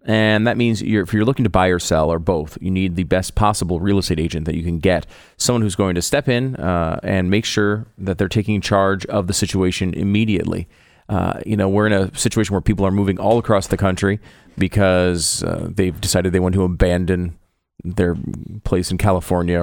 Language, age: English, 30-49